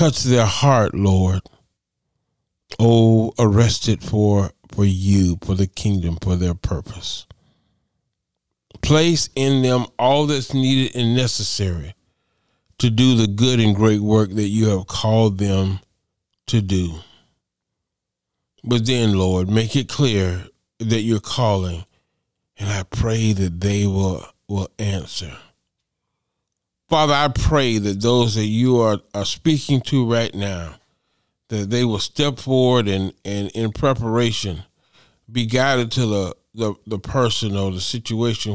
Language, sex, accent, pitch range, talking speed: English, male, American, 95-120 Hz, 135 wpm